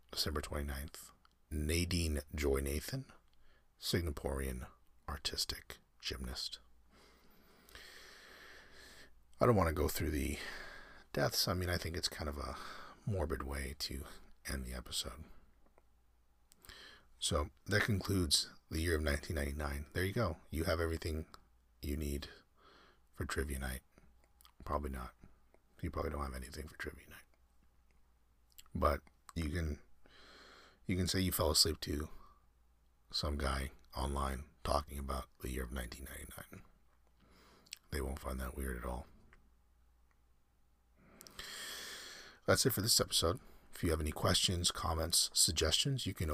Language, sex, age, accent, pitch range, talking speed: English, male, 40-59, American, 65-80 Hz, 125 wpm